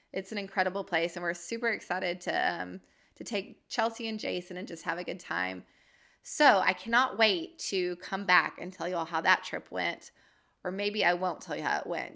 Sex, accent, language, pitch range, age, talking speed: female, American, English, 180-210 Hz, 20-39, 220 wpm